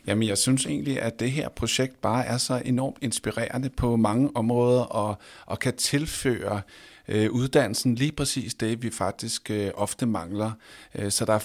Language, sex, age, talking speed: Danish, male, 50-69, 180 wpm